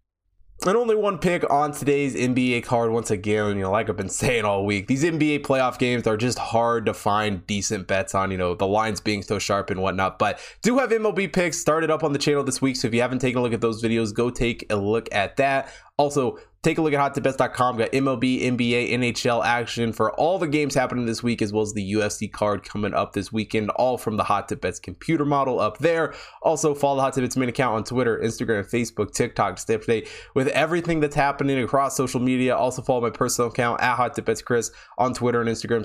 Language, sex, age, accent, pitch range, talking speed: English, male, 20-39, American, 105-135 Hz, 235 wpm